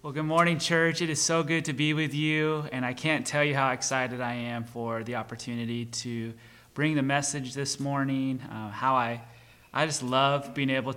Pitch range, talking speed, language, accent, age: 120-140 Hz, 210 wpm, English, American, 30-49